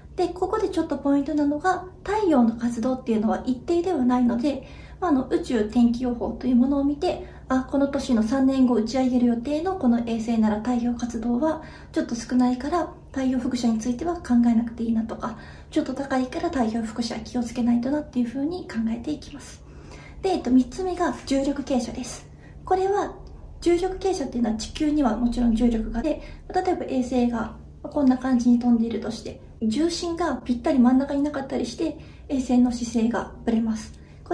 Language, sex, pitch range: Japanese, female, 235-325 Hz